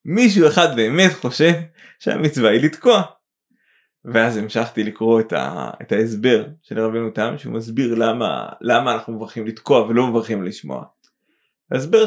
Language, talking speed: Hebrew, 140 wpm